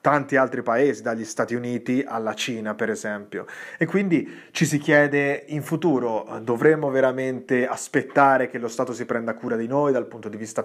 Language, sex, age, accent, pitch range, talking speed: Italian, male, 30-49, native, 120-140 Hz, 180 wpm